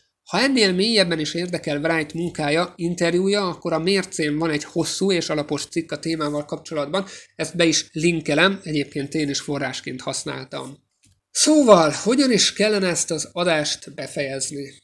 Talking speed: 150 wpm